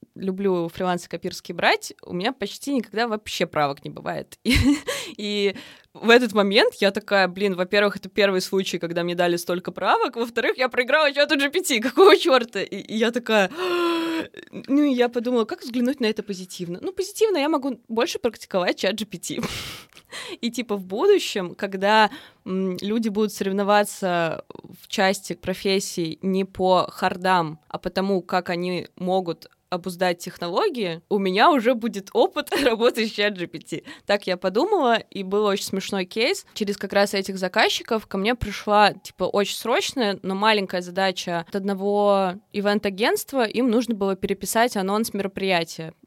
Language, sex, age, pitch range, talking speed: Russian, female, 20-39, 185-235 Hz, 150 wpm